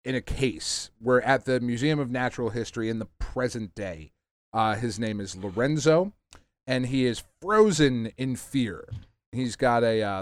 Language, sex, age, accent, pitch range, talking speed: English, male, 30-49, American, 110-145 Hz, 170 wpm